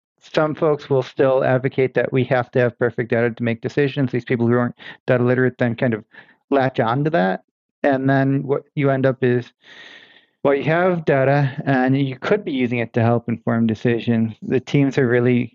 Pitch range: 120-140 Hz